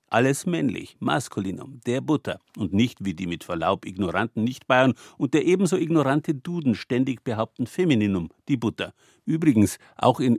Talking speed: 150 wpm